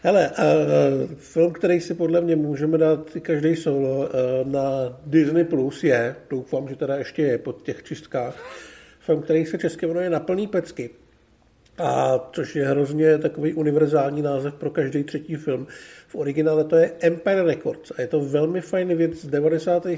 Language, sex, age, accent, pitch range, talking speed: Czech, male, 50-69, native, 135-165 Hz, 175 wpm